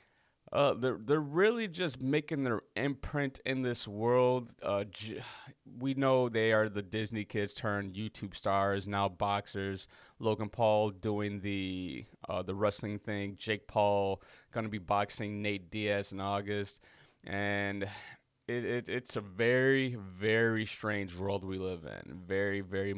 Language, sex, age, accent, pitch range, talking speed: English, male, 30-49, American, 100-130 Hz, 150 wpm